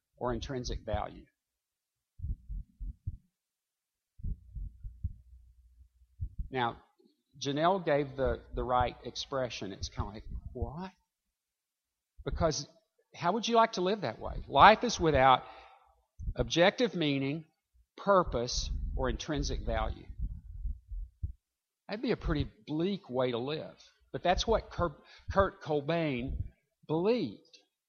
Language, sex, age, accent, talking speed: English, male, 50-69, American, 105 wpm